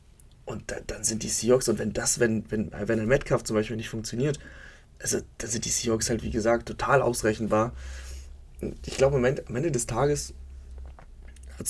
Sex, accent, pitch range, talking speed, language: male, German, 105-125 Hz, 190 wpm, German